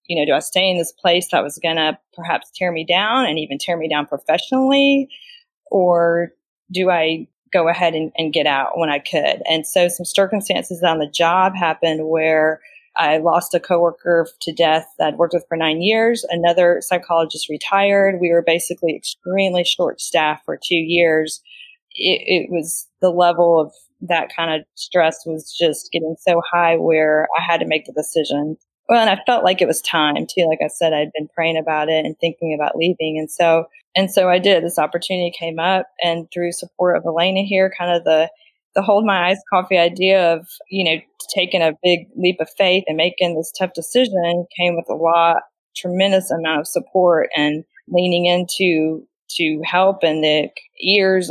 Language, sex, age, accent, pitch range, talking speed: English, female, 20-39, American, 160-190 Hz, 195 wpm